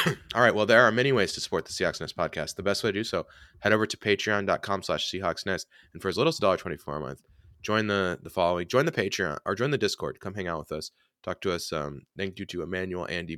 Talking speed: 265 wpm